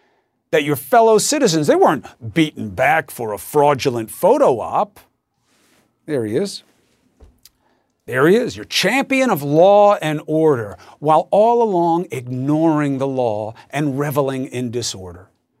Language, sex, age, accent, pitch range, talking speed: English, male, 50-69, American, 130-185 Hz, 135 wpm